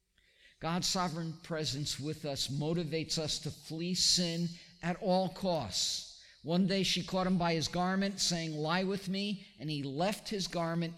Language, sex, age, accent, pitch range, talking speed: English, male, 50-69, American, 125-170 Hz, 165 wpm